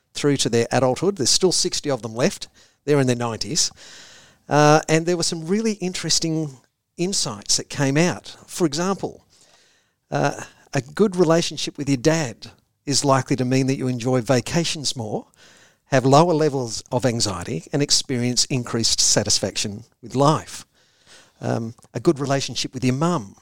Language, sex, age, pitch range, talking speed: English, male, 50-69, 120-160 Hz, 155 wpm